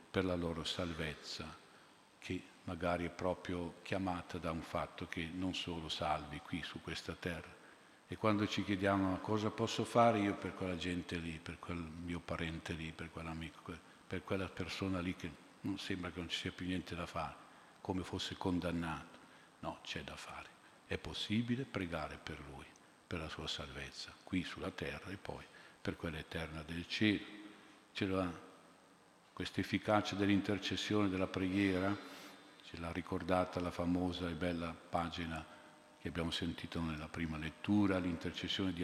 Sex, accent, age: male, native, 50-69